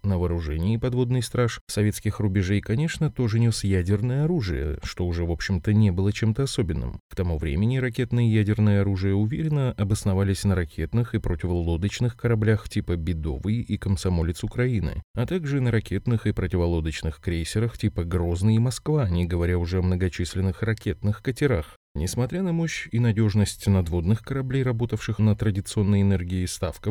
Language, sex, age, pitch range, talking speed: Russian, male, 30-49, 90-115 Hz, 150 wpm